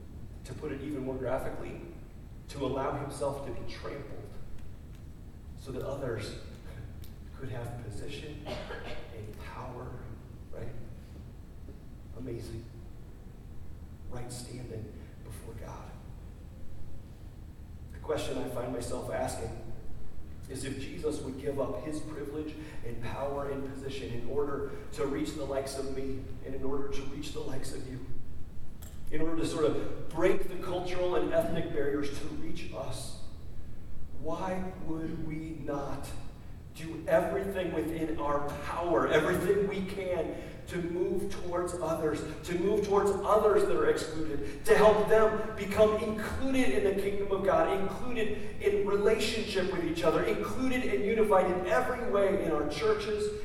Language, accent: English, American